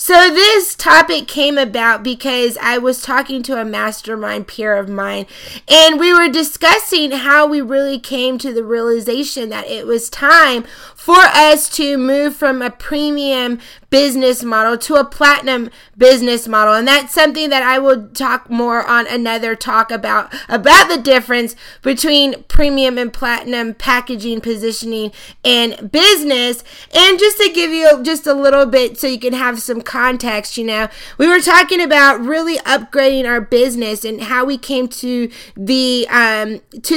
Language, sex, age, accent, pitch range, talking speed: English, female, 20-39, American, 235-285 Hz, 160 wpm